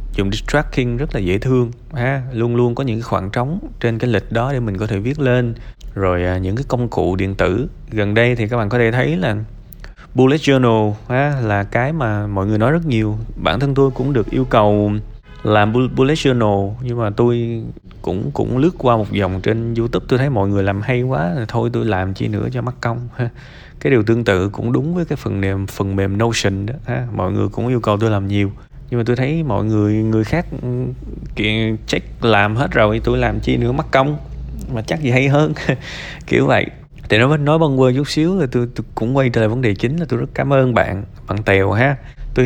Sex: male